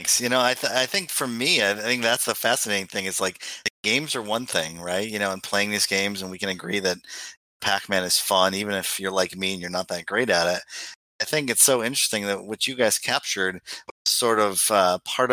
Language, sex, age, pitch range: English, male, 30-49, 95-105 Hz